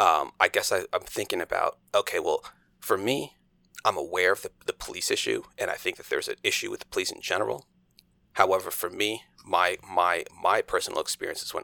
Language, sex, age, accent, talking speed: English, male, 30-49, American, 200 wpm